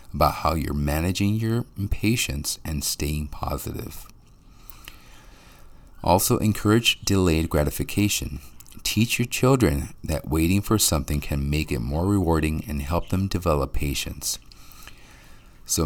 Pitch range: 75-100 Hz